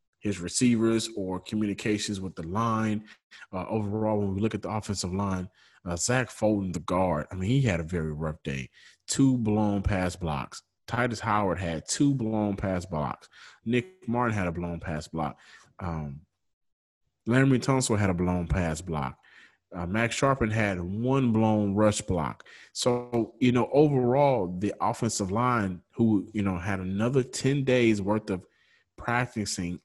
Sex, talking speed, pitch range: male, 160 wpm, 95-120 Hz